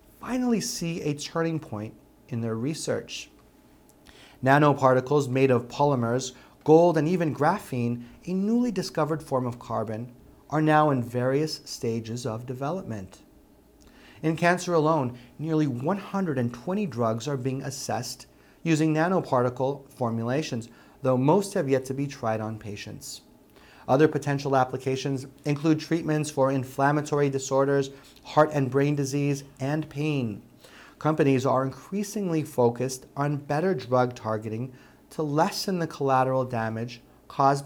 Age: 30-49